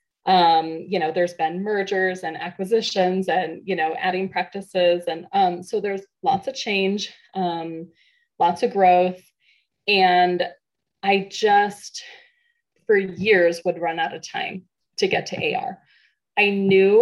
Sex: female